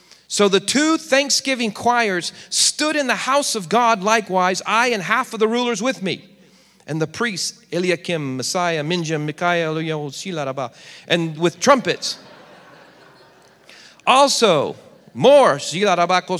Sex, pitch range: male, 180-245 Hz